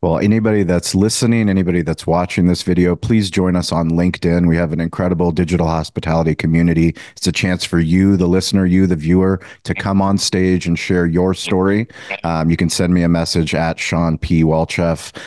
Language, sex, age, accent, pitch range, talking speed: English, male, 30-49, American, 85-100 Hz, 195 wpm